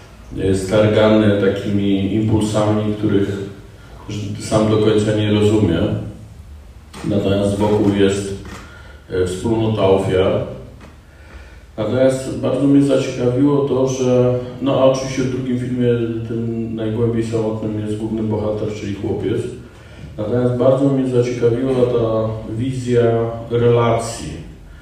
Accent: native